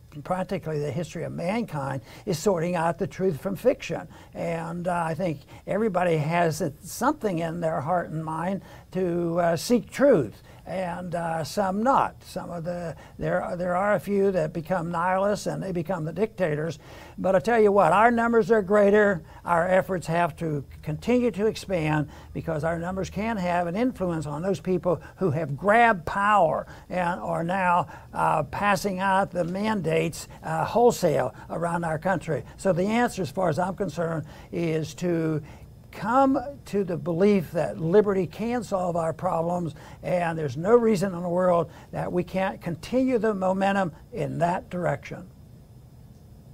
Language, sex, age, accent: English, male, 60-79, American